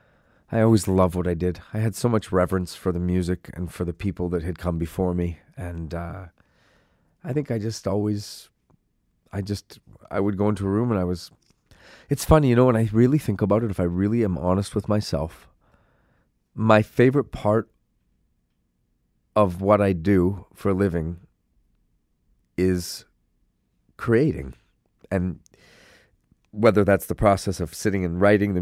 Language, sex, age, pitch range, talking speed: English, male, 40-59, 85-100 Hz, 170 wpm